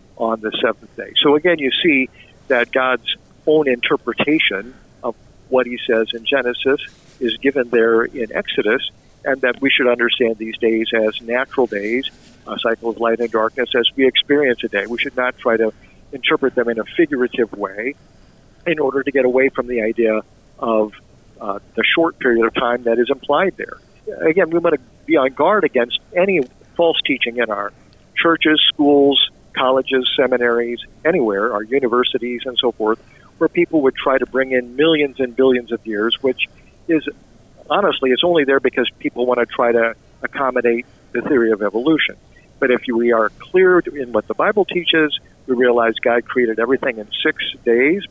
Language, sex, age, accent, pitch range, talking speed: English, male, 50-69, American, 115-140 Hz, 180 wpm